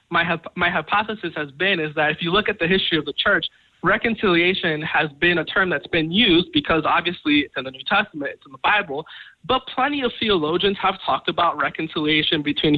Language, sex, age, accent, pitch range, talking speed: English, male, 20-39, American, 160-200 Hz, 205 wpm